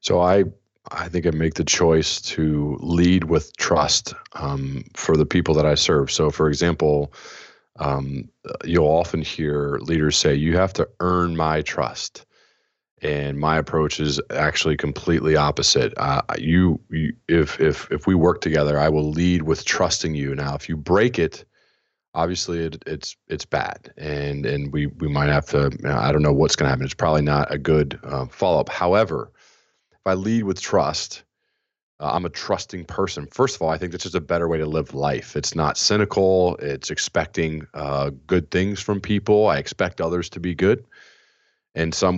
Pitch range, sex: 75-90 Hz, male